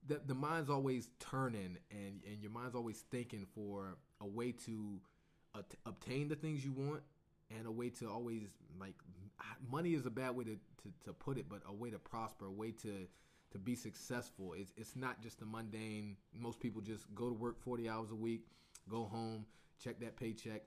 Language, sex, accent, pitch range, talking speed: English, male, American, 105-125 Hz, 205 wpm